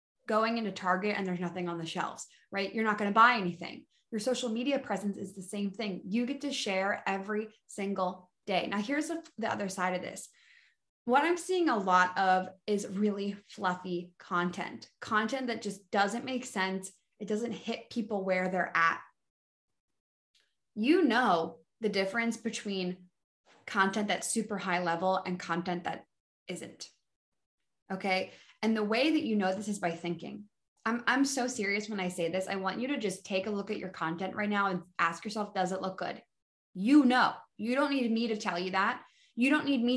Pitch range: 180-230 Hz